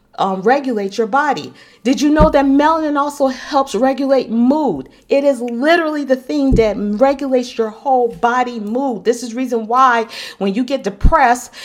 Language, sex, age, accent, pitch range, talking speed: English, female, 40-59, American, 215-270 Hz, 165 wpm